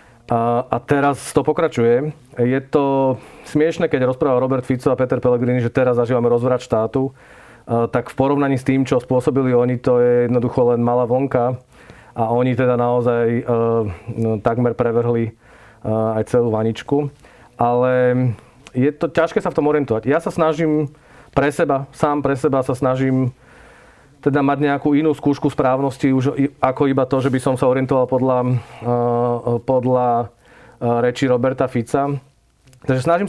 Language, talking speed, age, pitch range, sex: Slovak, 150 wpm, 40-59, 120-140 Hz, male